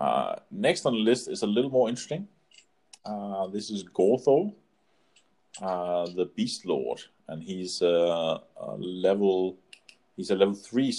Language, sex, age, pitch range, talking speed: English, male, 30-49, 90-125 Hz, 140 wpm